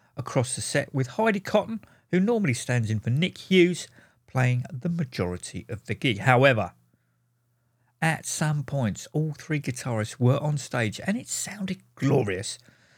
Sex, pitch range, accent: male, 120-170 Hz, British